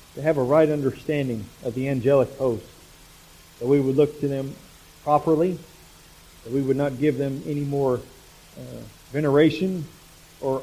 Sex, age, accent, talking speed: male, 40-59, American, 150 wpm